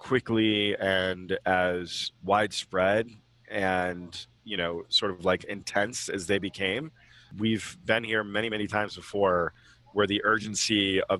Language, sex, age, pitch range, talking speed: English, male, 30-49, 90-100 Hz, 135 wpm